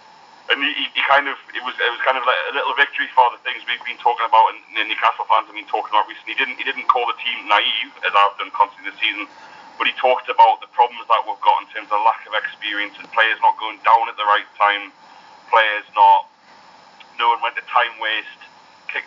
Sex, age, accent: male, 30-49, British